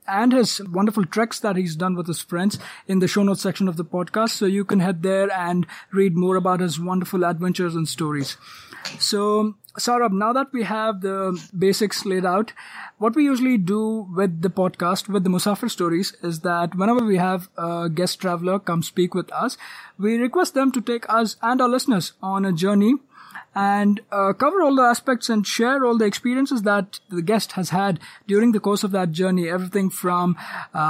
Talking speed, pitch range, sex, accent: 200 wpm, 180-215 Hz, male, Indian